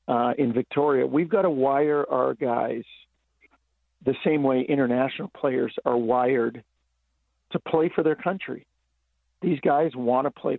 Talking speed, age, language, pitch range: 145 wpm, 50-69, English, 100-145 Hz